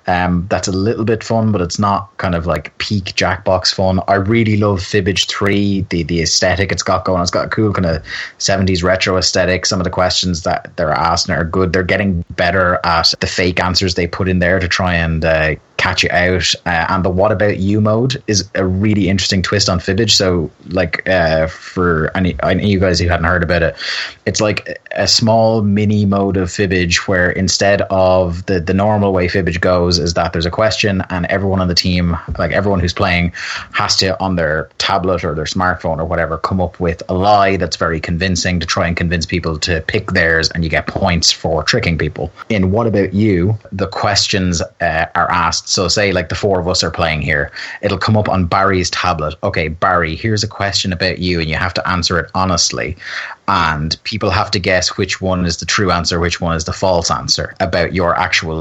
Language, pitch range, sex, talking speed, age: English, 85-100 Hz, male, 220 wpm, 20-39